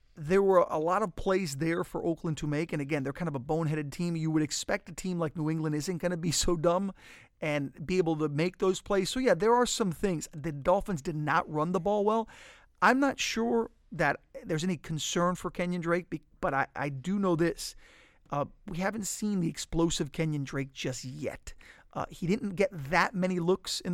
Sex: male